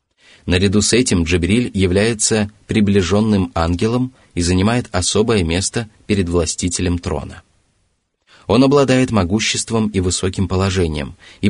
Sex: male